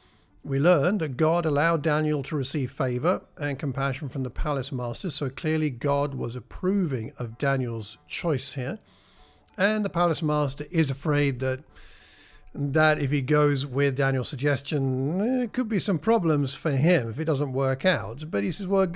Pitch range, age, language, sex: 130-160 Hz, 50-69, English, male